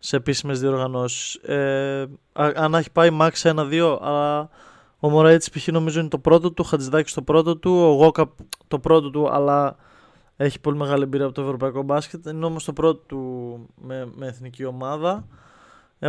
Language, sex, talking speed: Greek, male, 175 wpm